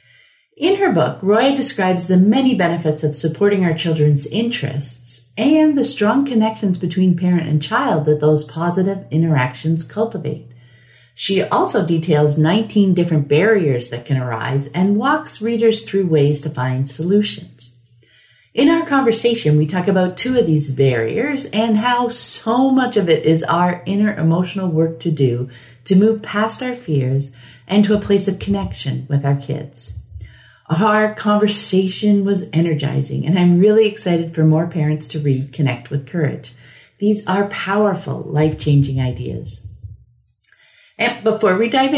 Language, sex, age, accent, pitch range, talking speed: English, female, 40-59, American, 140-210 Hz, 150 wpm